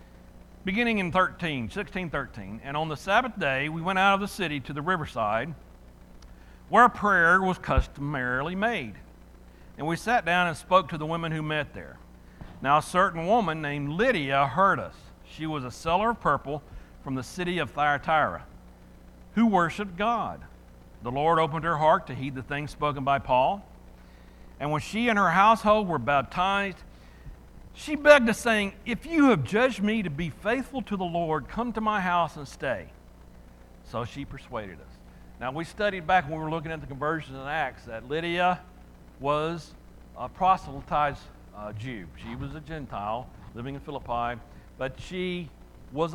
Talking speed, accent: 170 wpm, American